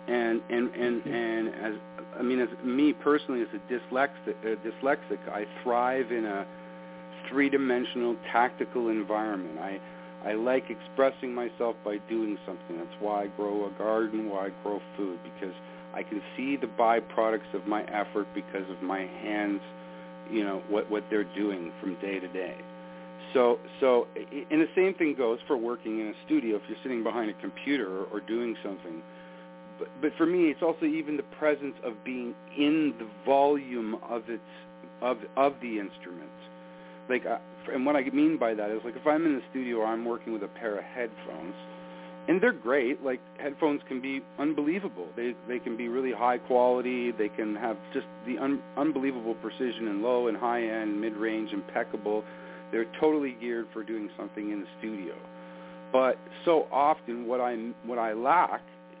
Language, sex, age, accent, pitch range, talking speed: English, male, 50-69, American, 90-125 Hz, 180 wpm